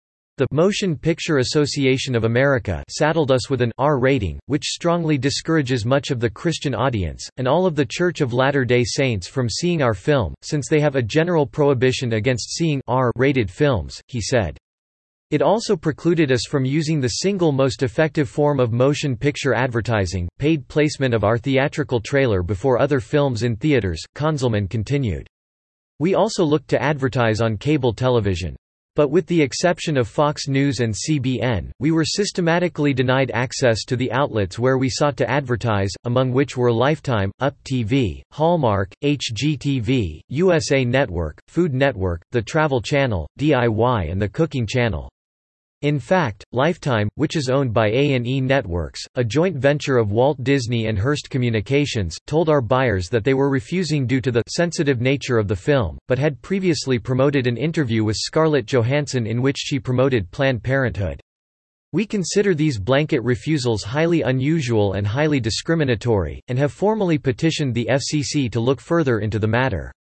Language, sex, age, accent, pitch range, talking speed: English, male, 40-59, American, 115-150 Hz, 165 wpm